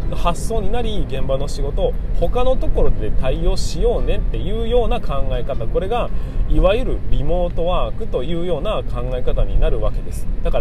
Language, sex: Japanese, male